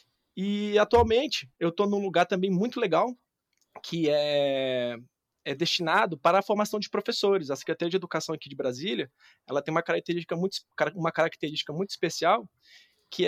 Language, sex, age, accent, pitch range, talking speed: Portuguese, male, 20-39, Brazilian, 160-210 Hz, 145 wpm